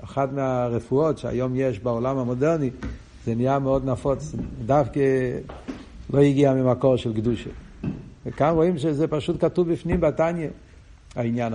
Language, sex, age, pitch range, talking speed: Hebrew, male, 60-79, 110-140 Hz, 125 wpm